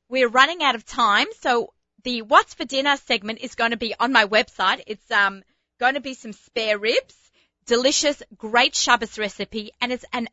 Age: 30-49